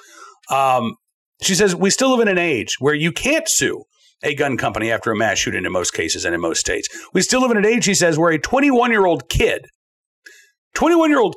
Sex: male